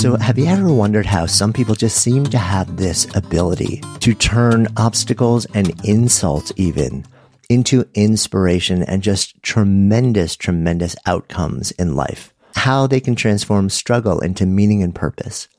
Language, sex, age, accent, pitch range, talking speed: English, male, 50-69, American, 95-120 Hz, 145 wpm